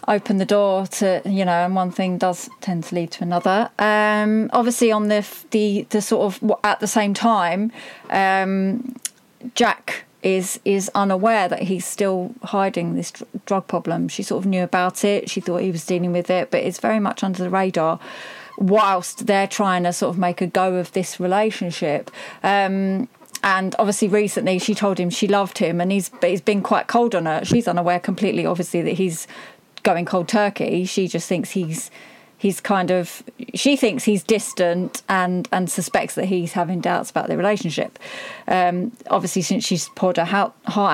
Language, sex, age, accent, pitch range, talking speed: English, female, 30-49, British, 185-215 Hz, 190 wpm